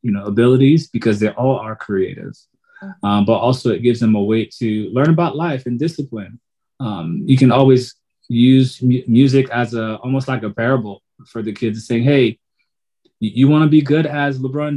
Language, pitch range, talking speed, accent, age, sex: English, 110-135 Hz, 190 wpm, American, 30-49, male